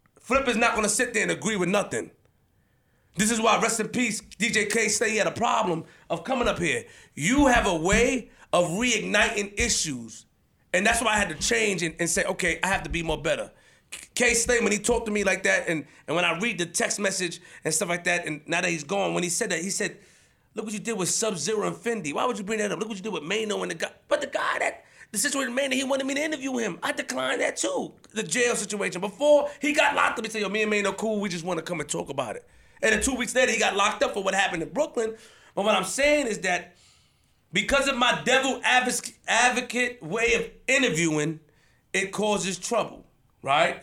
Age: 30-49